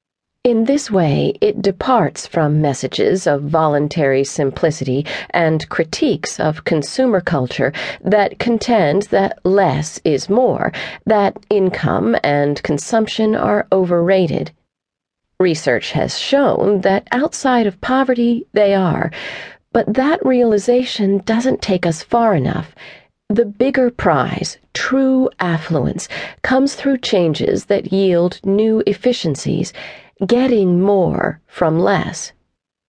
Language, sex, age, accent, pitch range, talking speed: English, female, 40-59, American, 160-225 Hz, 110 wpm